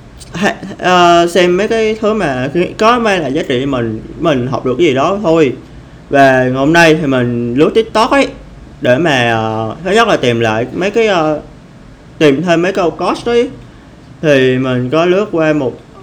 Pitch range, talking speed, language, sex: 130-170 Hz, 190 wpm, Vietnamese, male